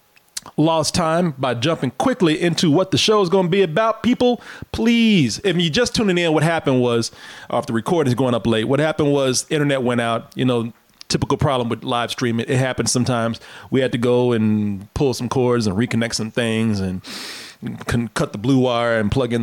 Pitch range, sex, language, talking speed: 125-175 Hz, male, English, 215 wpm